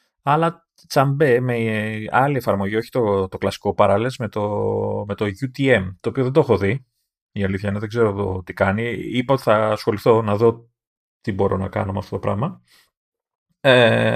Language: Greek